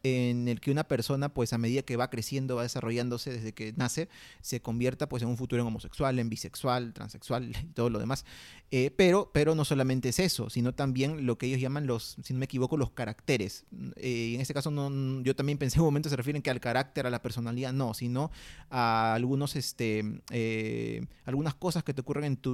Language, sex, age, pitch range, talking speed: Spanish, male, 30-49, 120-150 Hz, 220 wpm